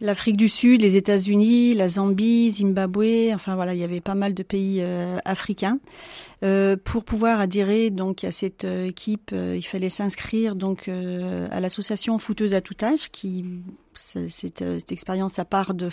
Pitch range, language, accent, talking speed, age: 185-215 Hz, French, French, 190 wpm, 40-59